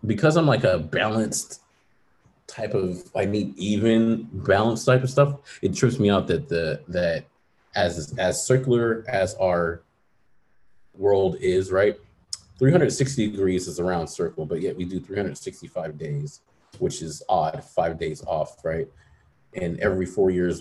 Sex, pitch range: male, 85-115 Hz